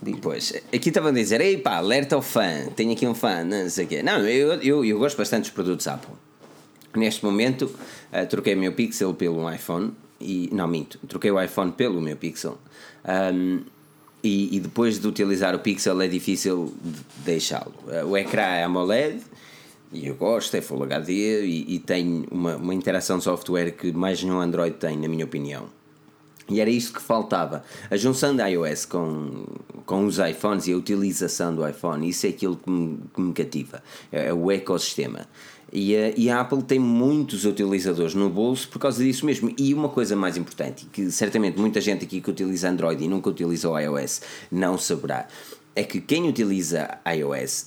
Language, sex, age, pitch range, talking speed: Portuguese, male, 20-39, 85-110 Hz, 175 wpm